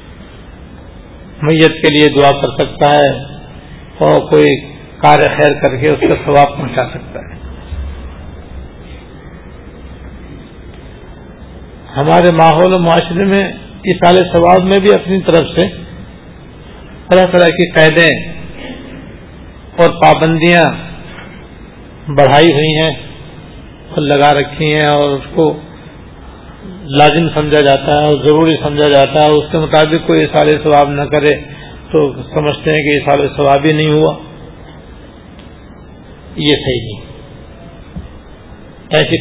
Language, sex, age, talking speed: Urdu, male, 50-69, 120 wpm